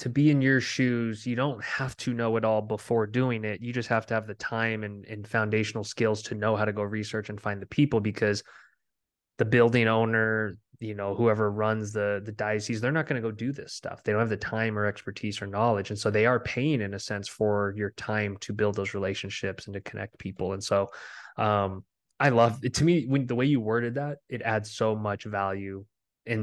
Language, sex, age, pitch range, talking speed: English, male, 20-39, 105-120 Hz, 235 wpm